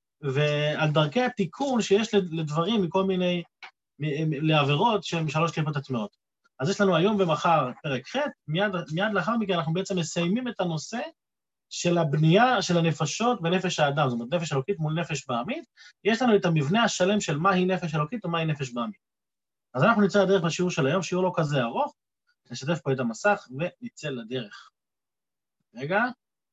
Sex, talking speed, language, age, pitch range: male, 160 wpm, Hebrew, 30-49, 150-210 Hz